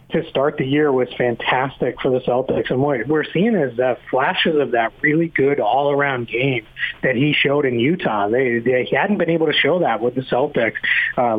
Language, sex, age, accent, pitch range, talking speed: English, male, 30-49, American, 130-160 Hz, 200 wpm